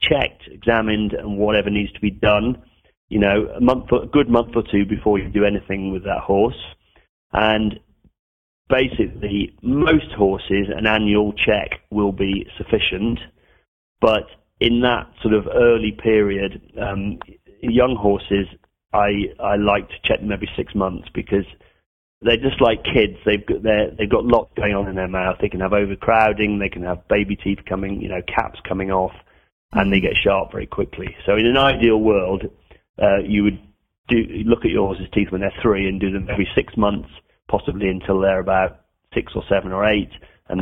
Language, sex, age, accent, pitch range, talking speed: English, male, 40-59, British, 95-105 Hz, 180 wpm